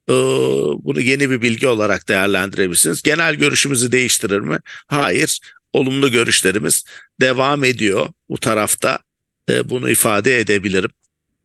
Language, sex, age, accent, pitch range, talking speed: English, male, 50-69, Turkish, 110-140 Hz, 105 wpm